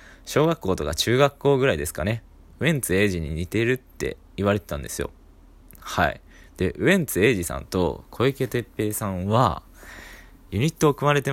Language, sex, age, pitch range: Japanese, male, 20-39, 90-130 Hz